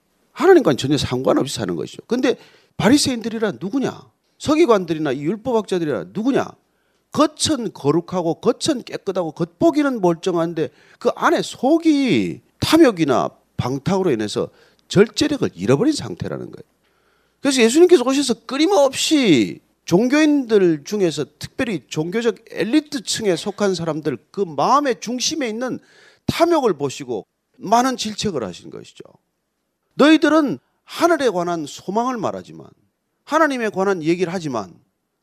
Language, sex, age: Korean, male, 40-59